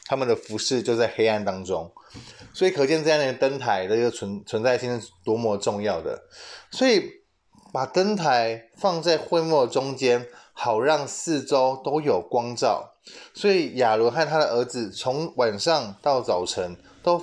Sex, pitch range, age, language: male, 120-175 Hz, 20-39, Chinese